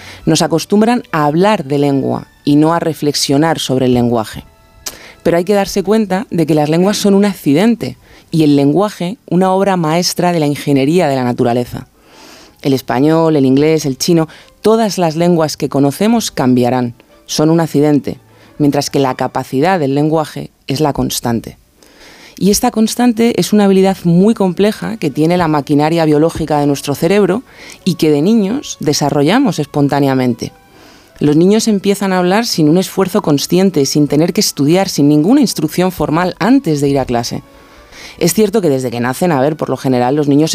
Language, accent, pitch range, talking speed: Spanish, Spanish, 140-180 Hz, 175 wpm